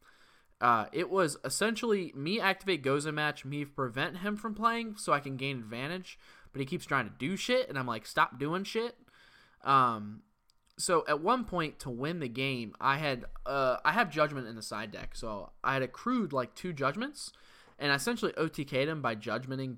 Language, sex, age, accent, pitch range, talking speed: English, male, 10-29, American, 120-170 Hz, 195 wpm